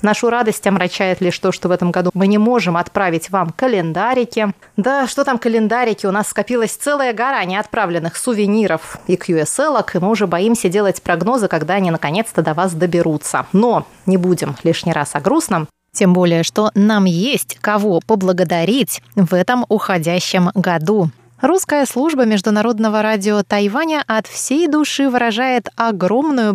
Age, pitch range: 20-39, 180-230 Hz